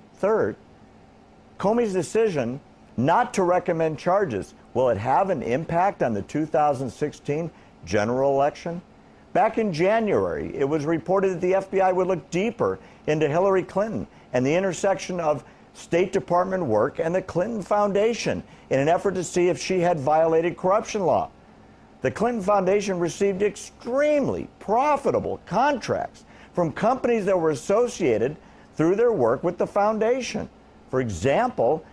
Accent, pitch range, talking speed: American, 165-230 Hz, 140 wpm